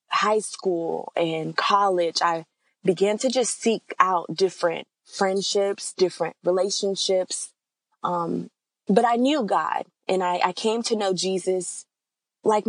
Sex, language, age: female, English, 20-39